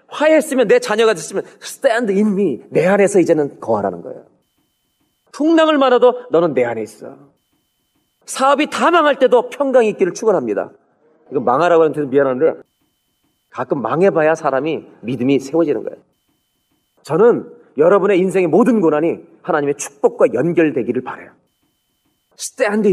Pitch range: 165-270 Hz